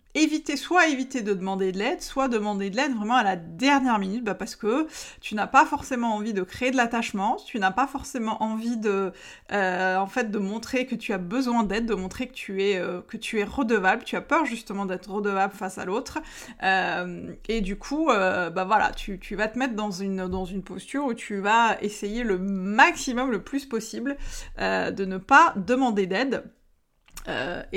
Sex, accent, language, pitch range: female, French, French, 195-255 Hz